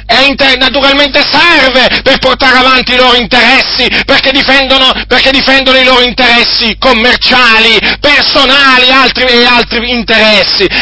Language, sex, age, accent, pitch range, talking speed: Italian, male, 40-59, native, 255-280 Hz, 120 wpm